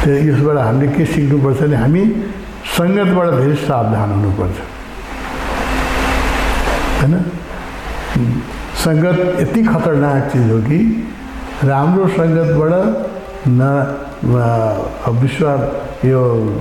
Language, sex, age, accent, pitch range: English, male, 60-79, Indian, 125-165 Hz